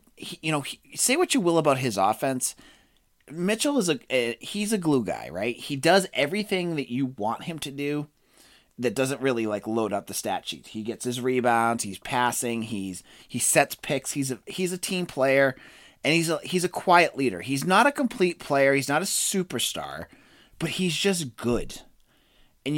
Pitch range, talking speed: 120-170 Hz, 200 wpm